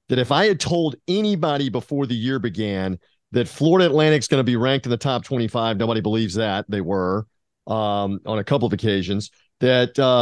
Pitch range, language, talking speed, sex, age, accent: 120-165 Hz, English, 200 wpm, male, 40-59, American